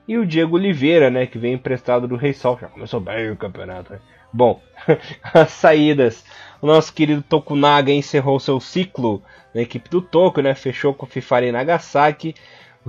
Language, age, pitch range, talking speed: Portuguese, 20-39, 125-155 Hz, 175 wpm